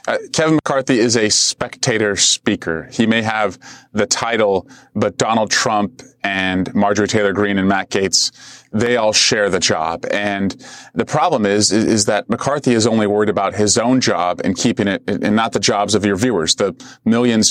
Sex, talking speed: male, 185 wpm